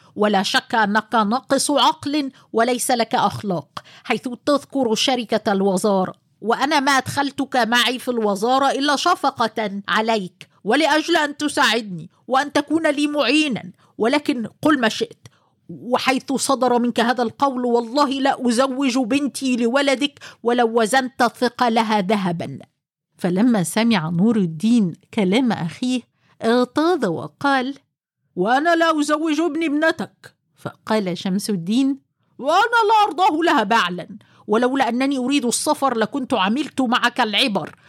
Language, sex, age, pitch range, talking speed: Arabic, female, 50-69, 205-270 Hz, 120 wpm